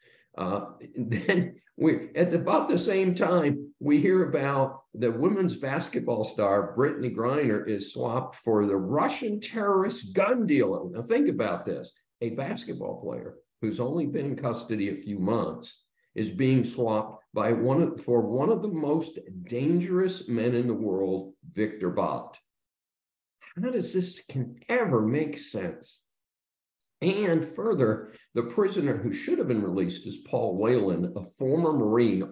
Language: English